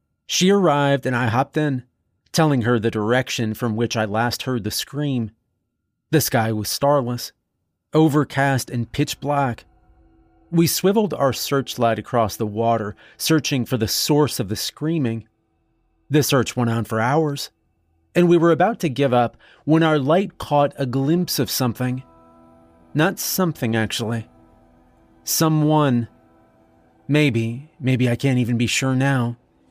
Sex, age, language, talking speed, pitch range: male, 30-49, English, 145 wpm, 115-150 Hz